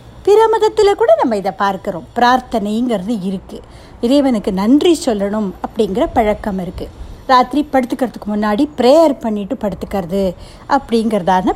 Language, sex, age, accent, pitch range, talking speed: Tamil, female, 60-79, native, 200-275 Hz, 110 wpm